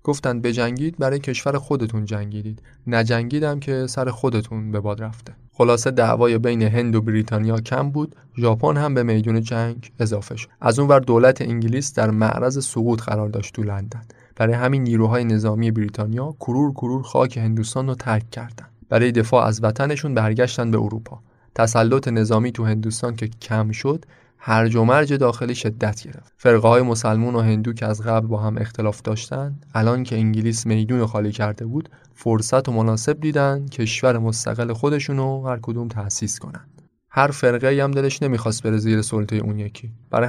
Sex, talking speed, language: male, 165 wpm, Persian